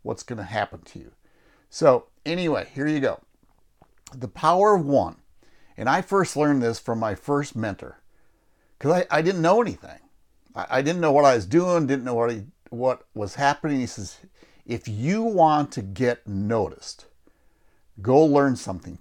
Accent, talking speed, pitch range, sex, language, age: American, 175 wpm, 115-180 Hz, male, English, 60-79